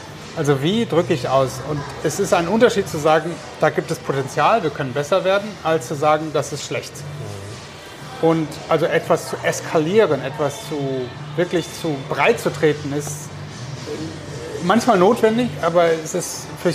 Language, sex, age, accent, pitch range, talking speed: German, male, 30-49, German, 145-175 Hz, 160 wpm